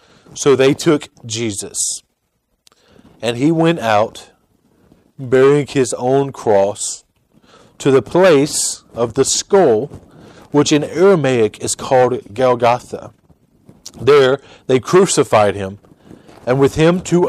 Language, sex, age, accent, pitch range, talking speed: English, male, 40-59, American, 125-165 Hz, 110 wpm